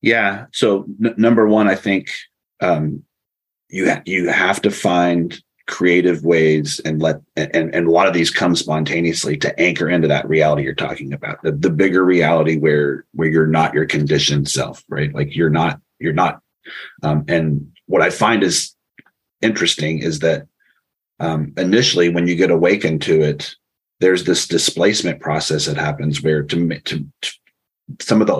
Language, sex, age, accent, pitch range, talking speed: English, male, 30-49, American, 75-95 Hz, 170 wpm